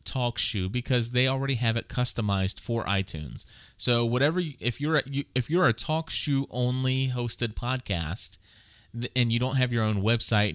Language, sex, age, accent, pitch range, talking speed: English, male, 30-49, American, 105-130 Hz, 170 wpm